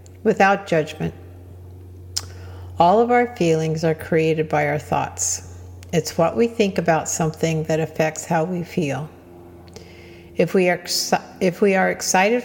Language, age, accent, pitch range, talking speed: English, 50-69, American, 135-180 Hz, 140 wpm